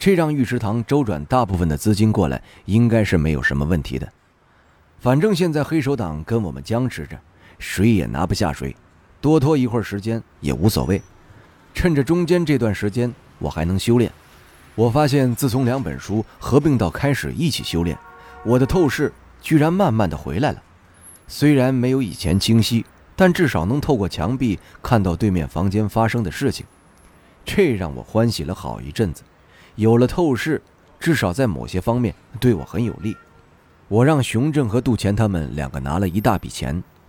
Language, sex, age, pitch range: Chinese, male, 30-49, 85-125 Hz